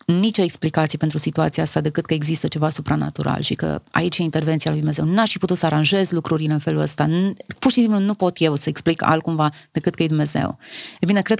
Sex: female